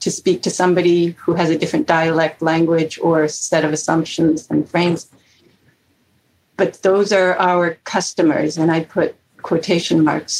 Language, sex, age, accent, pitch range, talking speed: English, female, 70-89, American, 170-195 Hz, 150 wpm